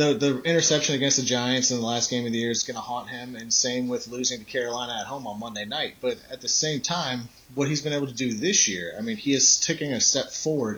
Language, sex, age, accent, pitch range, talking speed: English, male, 30-49, American, 115-140 Hz, 280 wpm